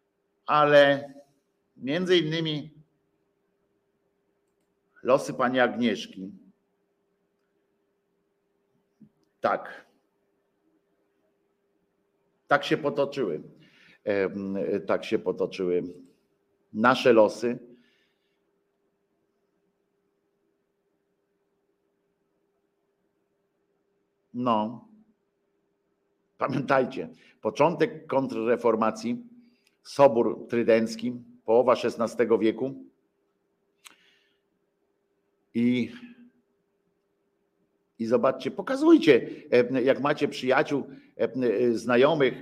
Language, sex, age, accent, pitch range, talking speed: Polish, male, 50-69, native, 120-200 Hz, 45 wpm